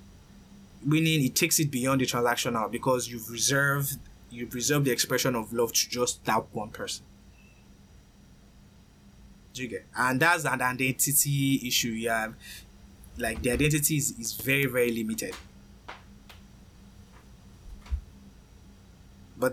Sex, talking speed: male, 110 wpm